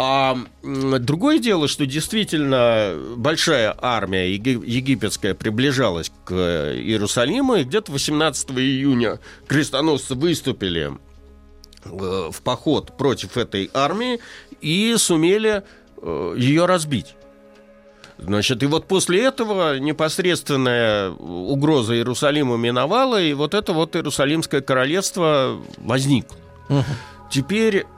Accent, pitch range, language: native, 100-155 Hz, Russian